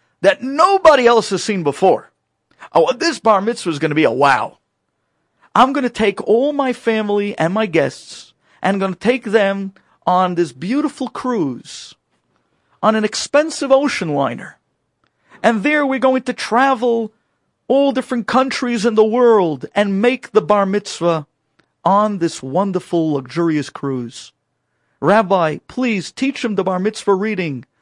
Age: 50-69